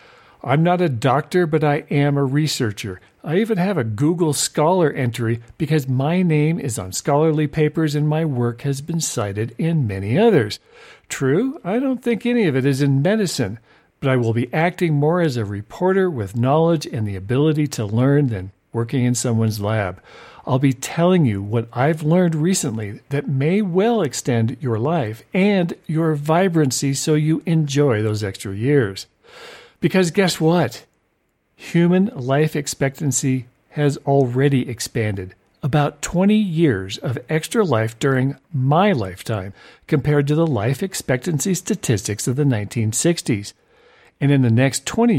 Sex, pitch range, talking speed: male, 120-160 Hz, 155 wpm